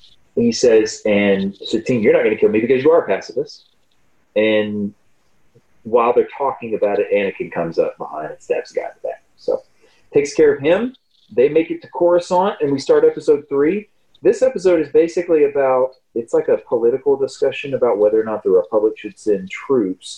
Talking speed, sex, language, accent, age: 195 wpm, male, English, American, 30-49